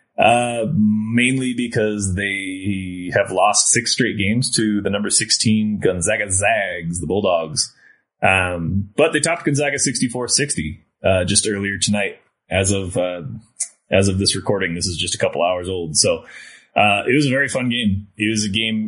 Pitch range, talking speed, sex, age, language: 90-115 Hz, 170 wpm, male, 30-49, English